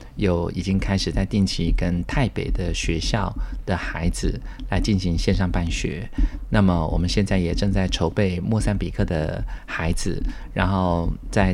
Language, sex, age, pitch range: Chinese, male, 30-49, 85-100 Hz